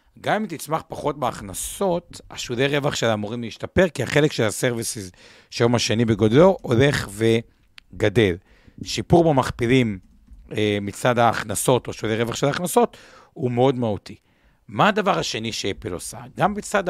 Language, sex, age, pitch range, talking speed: Hebrew, male, 60-79, 105-145 Hz, 140 wpm